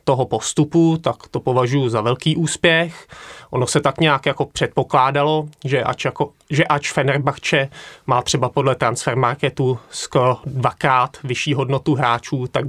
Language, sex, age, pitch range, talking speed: Czech, male, 20-39, 120-145 Hz, 135 wpm